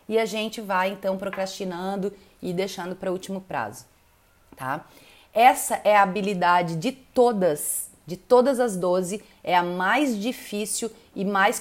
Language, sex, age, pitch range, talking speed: Portuguese, female, 30-49, 200-245 Hz, 150 wpm